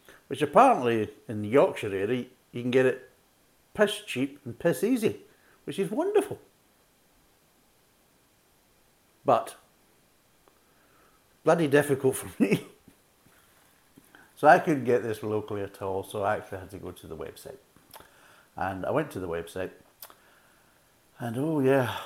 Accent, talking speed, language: British, 135 wpm, English